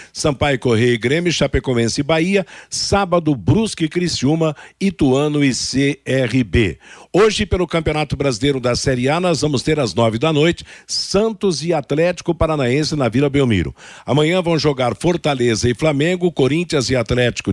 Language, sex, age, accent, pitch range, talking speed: Portuguese, male, 60-79, Brazilian, 130-170 Hz, 150 wpm